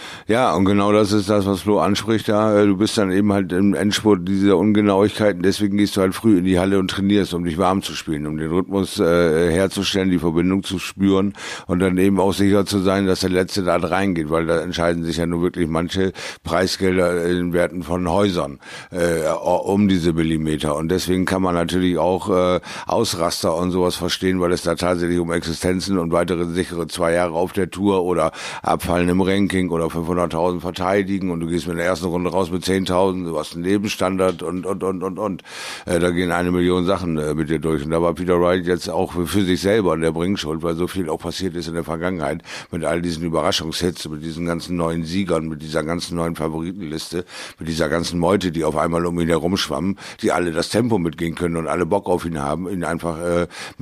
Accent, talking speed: German, 215 wpm